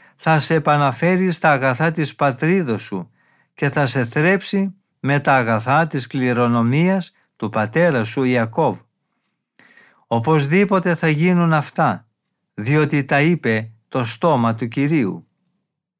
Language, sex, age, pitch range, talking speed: Greek, male, 50-69, 125-170 Hz, 120 wpm